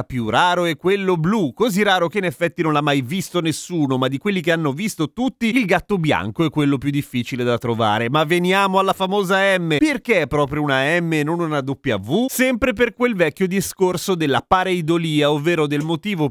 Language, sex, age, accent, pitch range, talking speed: Italian, male, 30-49, native, 140-185 Hz, 200 wpm